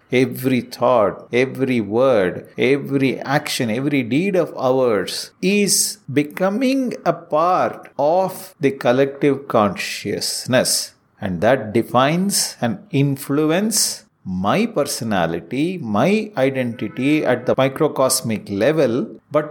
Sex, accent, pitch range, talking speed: male, Indian, 115-175 Hz, 100 wpm